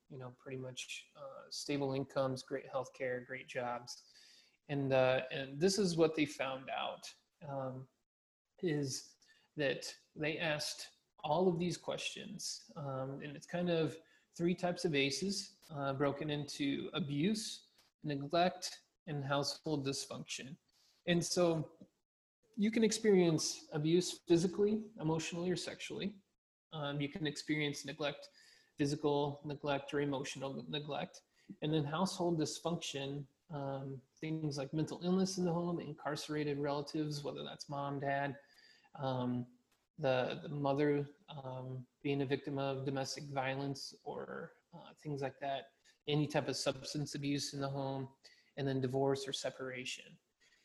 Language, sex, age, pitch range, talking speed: English, male, 30-49, 135-165 Hz, 135 wpm